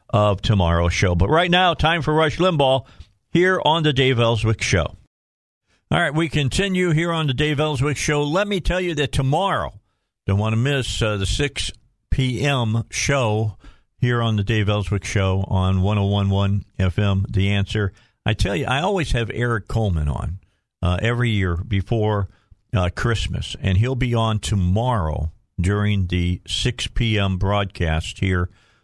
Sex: male